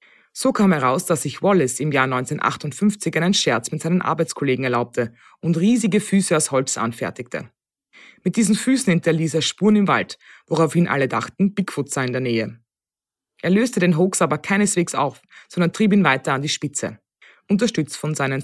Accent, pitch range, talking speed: German, 130-185 Hz, 175 wpm